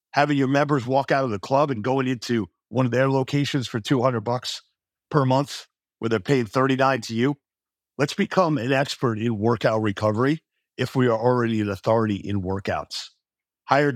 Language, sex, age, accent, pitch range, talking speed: English, male, 50-69, American, 110-140 Hz, 180 wpm